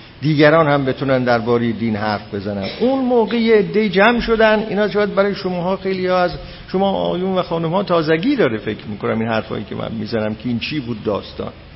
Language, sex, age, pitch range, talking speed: Persian, male, 50-69, 140-230 Hz, 205 wpm